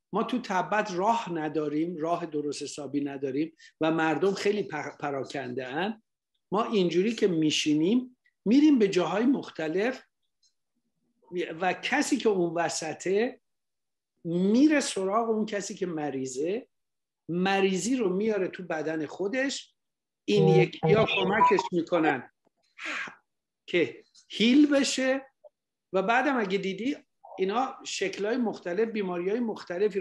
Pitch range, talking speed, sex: 170-230 Hz, 110 wpm, male